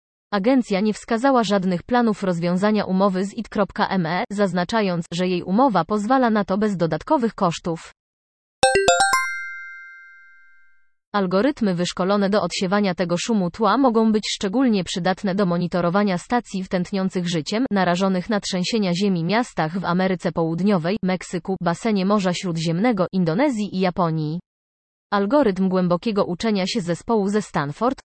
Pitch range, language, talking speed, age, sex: 180-215 Hz, Polish, 120 wpm, 20-39, female